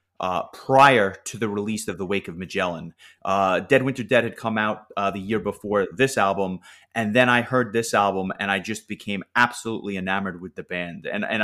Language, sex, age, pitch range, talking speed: English, male, 30-49, 100-130 Hz, 210 wpm